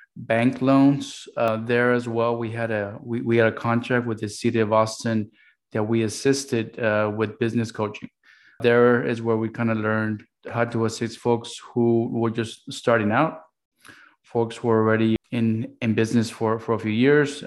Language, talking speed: English, 185 wpm